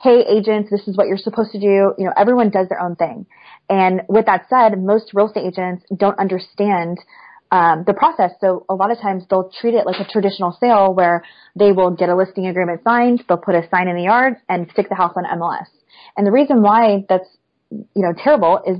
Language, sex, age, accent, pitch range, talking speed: English, female, 20-39, American, 185-220 Hz, 225 wpm